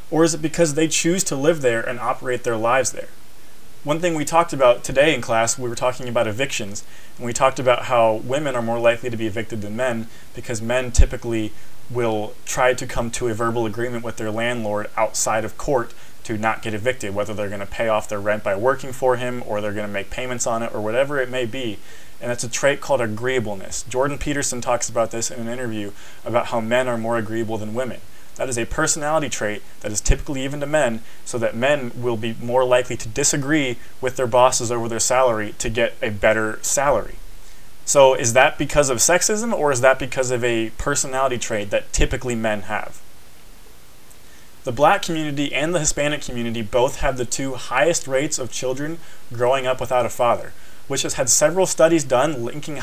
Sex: male